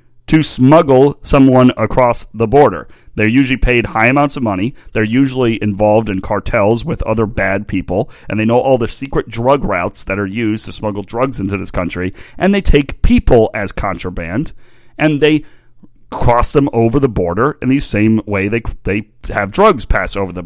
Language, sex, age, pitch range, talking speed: English, male, 40-59, 100-135 Hz, 185 wpm